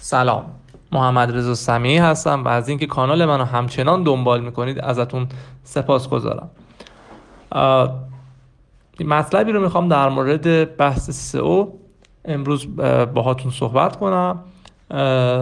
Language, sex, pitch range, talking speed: Persian, male, 130-170 Hz, 100 wpm